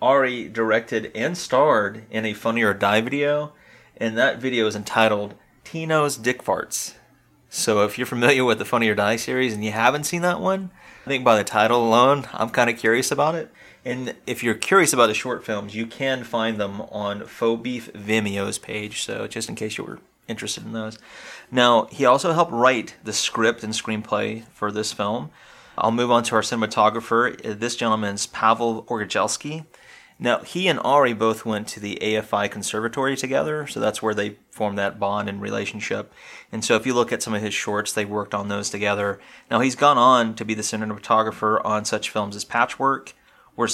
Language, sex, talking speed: English, male, 195 wpm